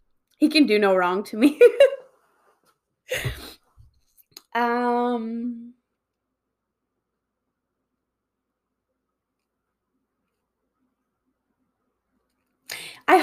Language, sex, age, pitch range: English, female, 20-39, 215-295 Hz